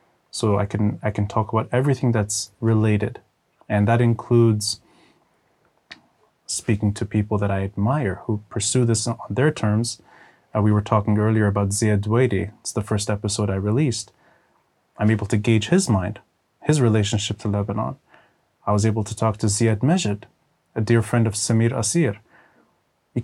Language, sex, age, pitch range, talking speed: Arabic, male, 30-49, 105-125 Hz, 165 wpm